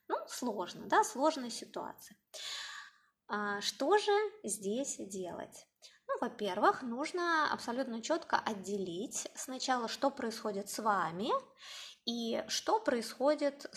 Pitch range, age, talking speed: 215-295 Hz, 20-39, 105 wpm